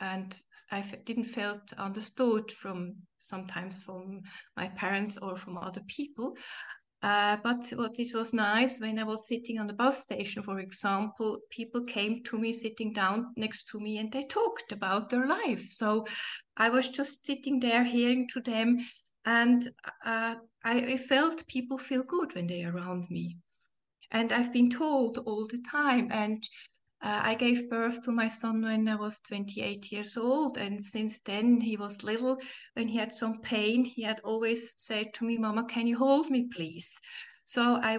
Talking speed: 175 wpm